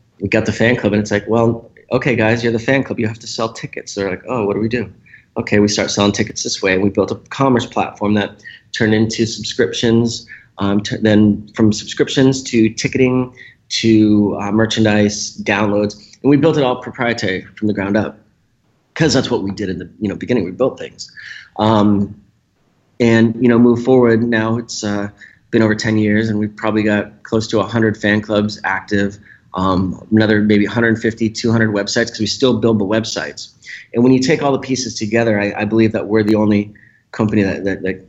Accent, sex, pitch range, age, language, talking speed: American, male, 105-115 Hz, 30-49, English, 205 wpm